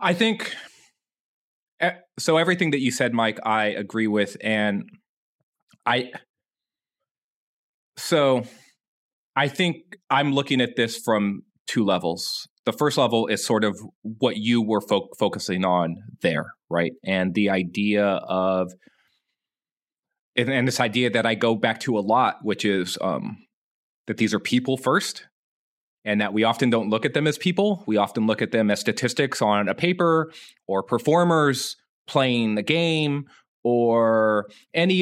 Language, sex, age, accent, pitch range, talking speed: English, male, 30-49, American, 110-150 Hz, 145 wpm